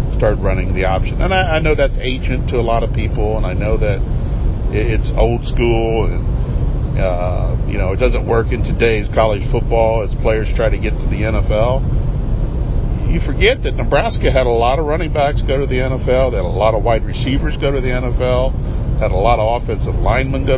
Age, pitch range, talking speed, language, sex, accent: 50-69, 105-125 Hz, 210 wpm, English, male, American